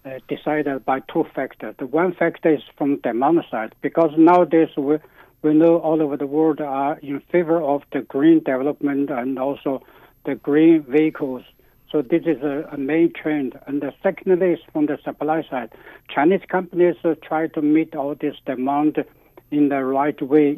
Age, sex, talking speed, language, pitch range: 60-79, male, 185 wpm, English, 135-160 Hz